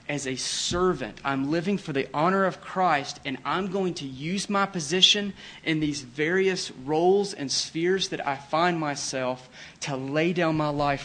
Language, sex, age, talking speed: English, male, 40-59, 175 wpm